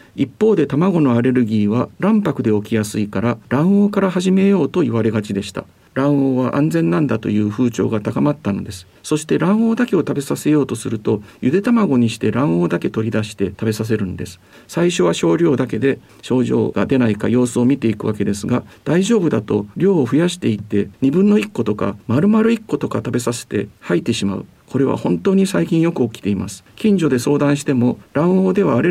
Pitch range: 110-155 Hz